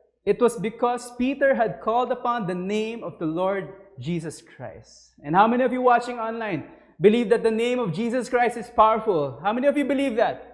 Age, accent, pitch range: 20-39, Filipino, 220-275 Hz